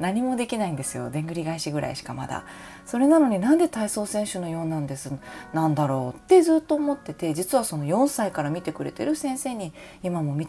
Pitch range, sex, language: 150-235 Hz, female, Japanese